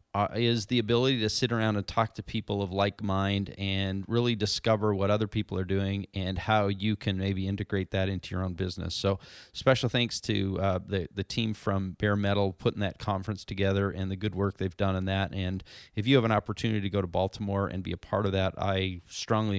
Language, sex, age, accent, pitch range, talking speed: English, male, 30-49, American, 95-120 Hz, 225 wpm